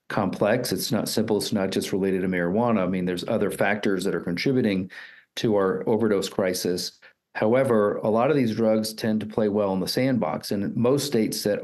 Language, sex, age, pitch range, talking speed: English, male, 40-59, 100-120 Hz, 200 wpm